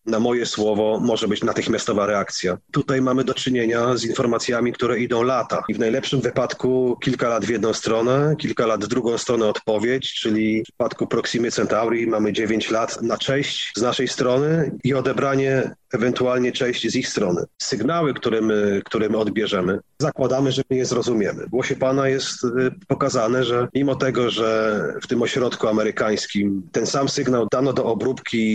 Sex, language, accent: male, Polish, native